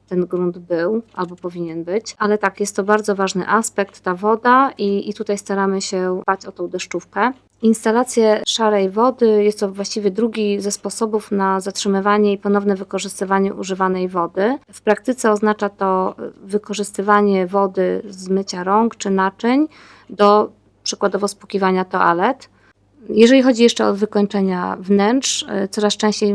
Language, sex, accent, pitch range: Polish, female, native, 190-210 Hz